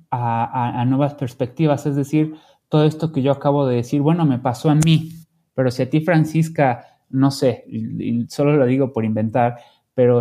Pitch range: 115-135 Hz